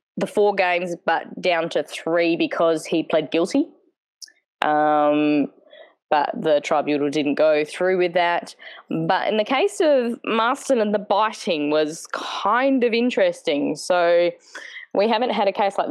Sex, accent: female, Australian